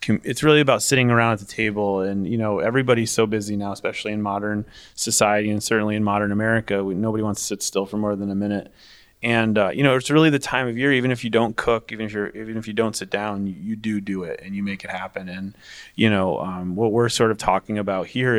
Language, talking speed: English, 260 wpm